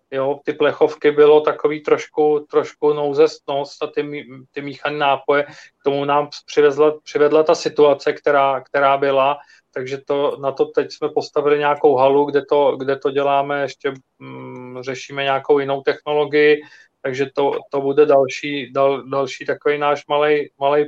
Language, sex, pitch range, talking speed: Czech, male, 135-150 Hz, 150 wpm